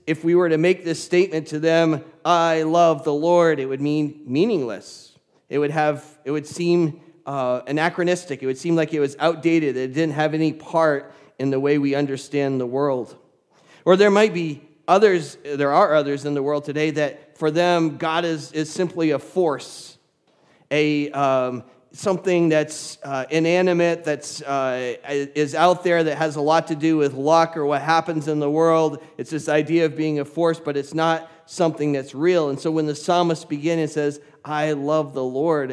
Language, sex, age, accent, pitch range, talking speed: English, male, 40-59, American, 145-165 Hz, 195 wpm